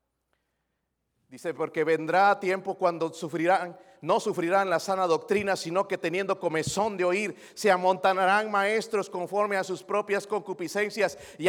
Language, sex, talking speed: Spanish, male, 135 wpm